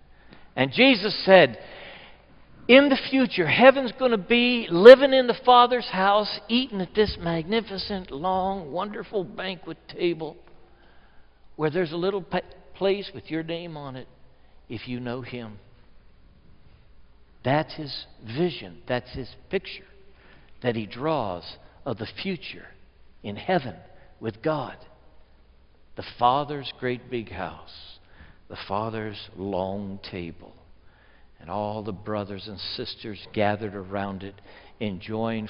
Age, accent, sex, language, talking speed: 60-79, American, male, English, 120 wpm